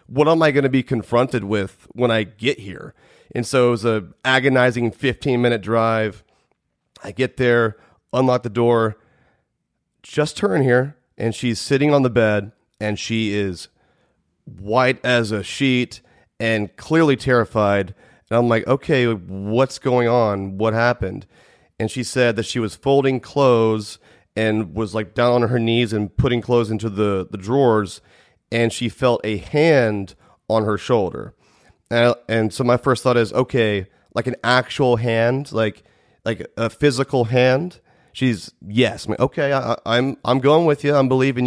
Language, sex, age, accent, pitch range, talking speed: English, male, 30-49, American, 110-130 Hz, 170 wpm